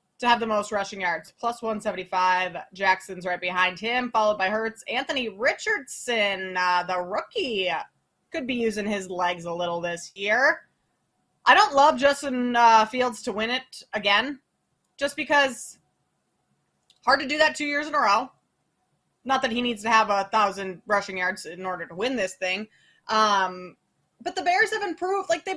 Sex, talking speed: female, 175 wpm